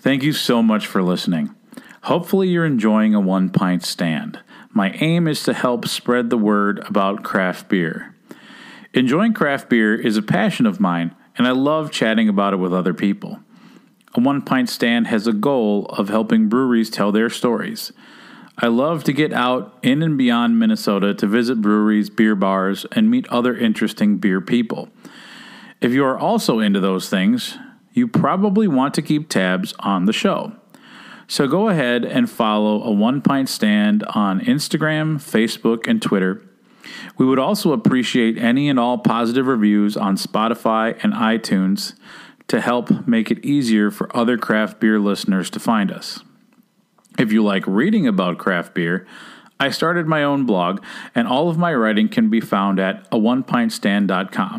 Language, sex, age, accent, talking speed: English, male, 40-59, American, 165 wpm